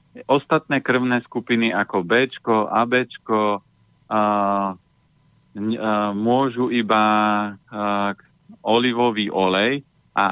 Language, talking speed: Slovak, 80 wpm